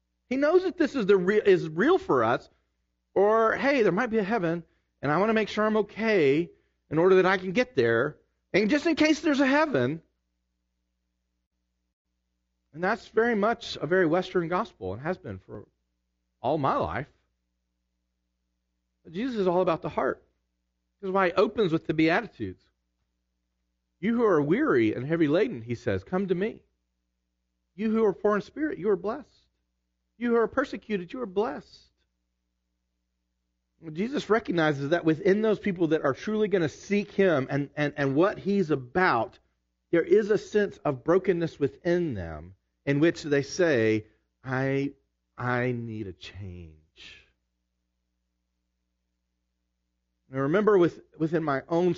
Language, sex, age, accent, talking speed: English, male, 40-59, American, 160 wpm